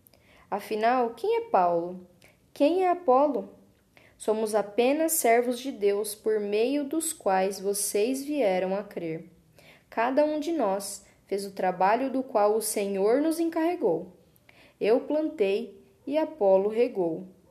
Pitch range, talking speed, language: 195-280 Hz, 130 wpm, Portuguese